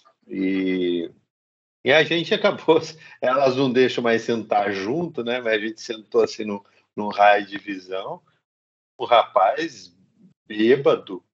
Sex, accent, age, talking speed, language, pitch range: male, Brazilian, 50-69, 125 wpm, Portuguese, 110-160 Hz